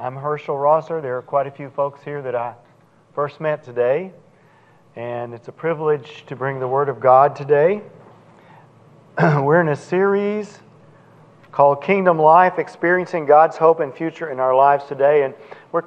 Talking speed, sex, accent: 165 wpm, male, American